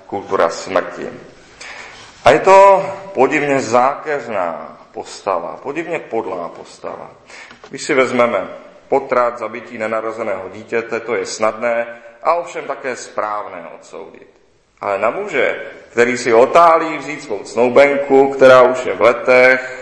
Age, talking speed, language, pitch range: 40-59, 120 wpm, Czech, 115-155 Hz